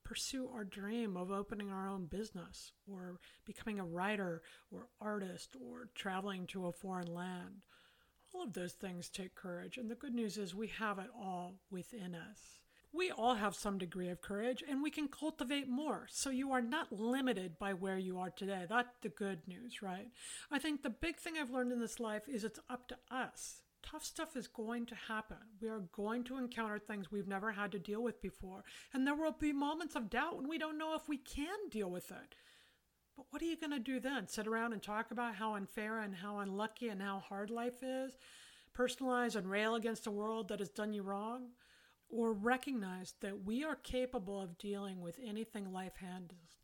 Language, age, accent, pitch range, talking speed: English, 50-69, American, 190-250 Hz, 205 wpm